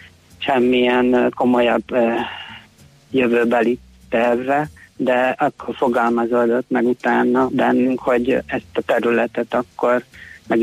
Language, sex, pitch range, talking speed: Hungarian, male, 115-125 Hz, 95 wpm